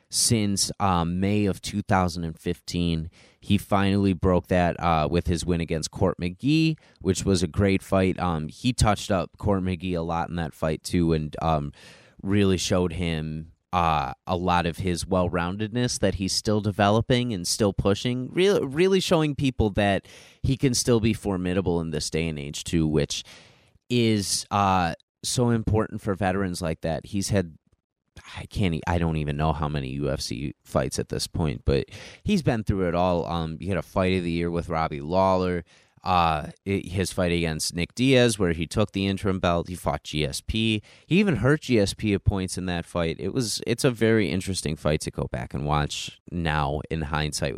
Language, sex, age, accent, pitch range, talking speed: English, male, 30-49, American, 85-105 Hz, 185 wpm